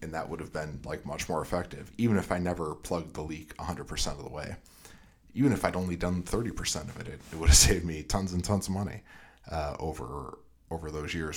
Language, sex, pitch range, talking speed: English, male, 75-90 Hz, 225 wpm